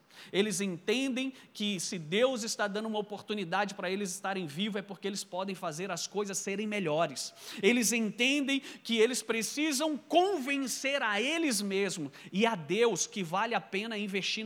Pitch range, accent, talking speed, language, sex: 175-220 Hz, Brazilian, 160 wpm, Portuguese, male